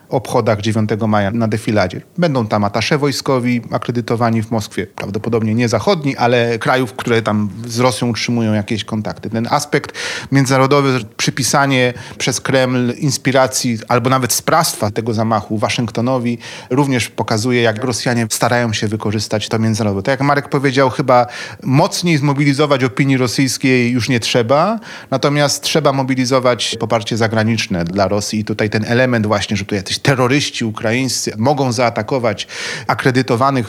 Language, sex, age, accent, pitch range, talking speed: Polish, male, 30-49, native, 110-135 Hz, 135 wpm